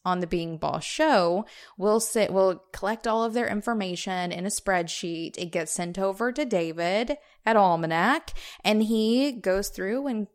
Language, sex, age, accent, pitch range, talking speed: English, female, 20-39, American, 175-220 Hz, 170 wpm